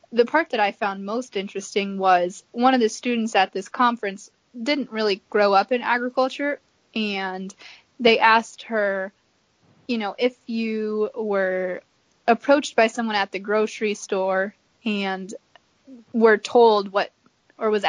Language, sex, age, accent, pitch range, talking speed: English, female, 20-39, American, 200-240 Hz, 145 wpm